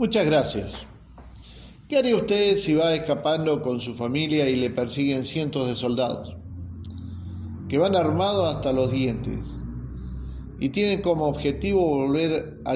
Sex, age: male, 40-59